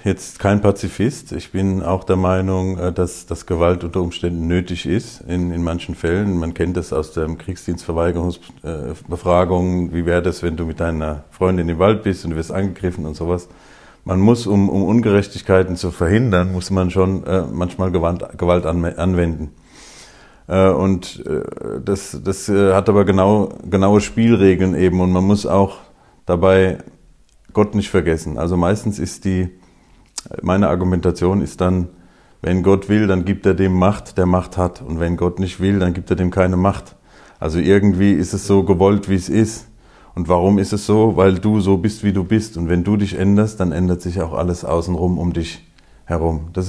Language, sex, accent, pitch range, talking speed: German, male, German, 85-100 Hz, 175 wpm